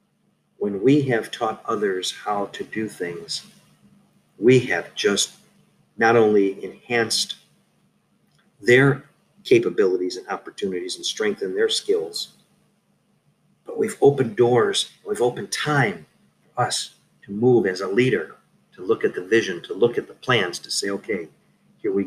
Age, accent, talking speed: 50-69, American, 140 wpm